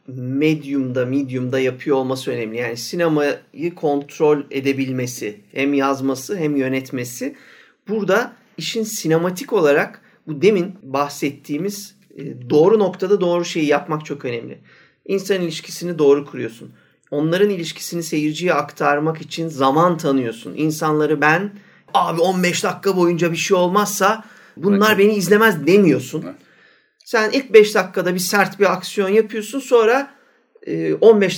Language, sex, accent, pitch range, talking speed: Turkish, male, native, 145-205 Hz, 120 wpm